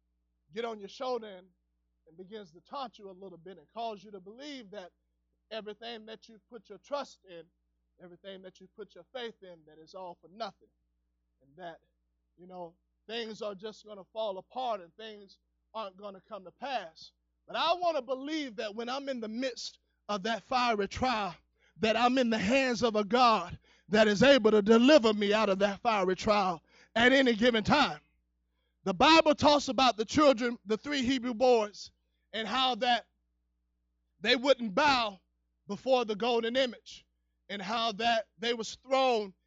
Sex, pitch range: male, 195-270 Hz